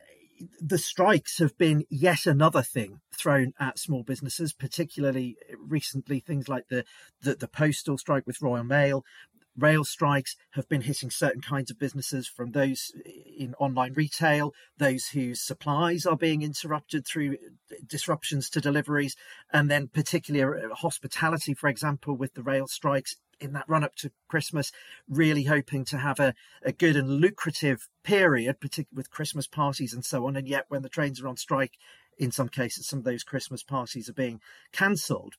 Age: 40-59